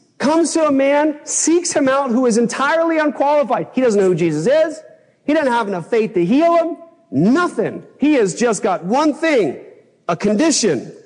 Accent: American